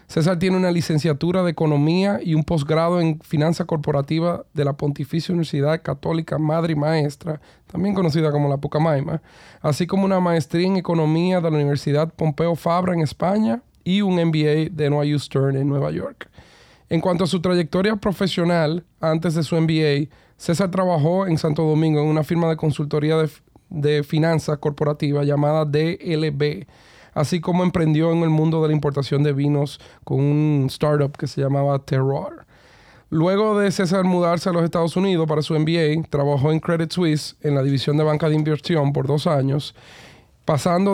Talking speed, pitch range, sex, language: 170 wpm, 145-170 Hz, male, Spanish